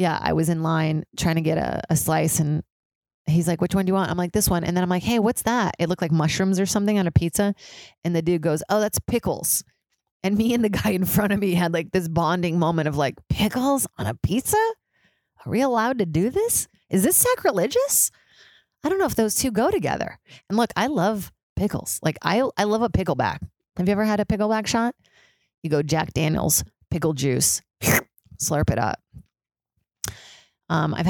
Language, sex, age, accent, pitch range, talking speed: English, female, 30-49, American, 160-220 Hz, 215 wpm